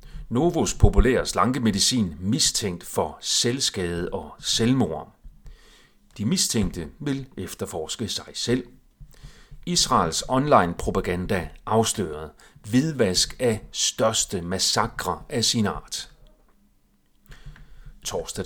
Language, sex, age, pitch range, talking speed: Danish, male, 40-59, 95-135 Hz, 80 wpm